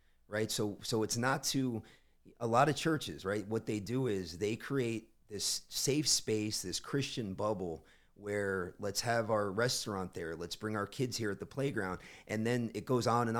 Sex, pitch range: male, 95-120 Hz